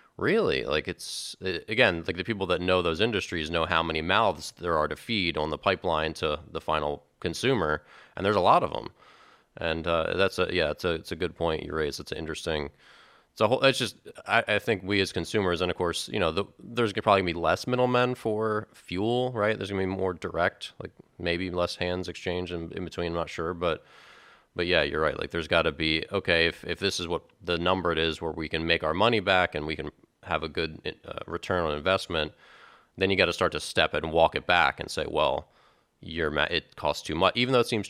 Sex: male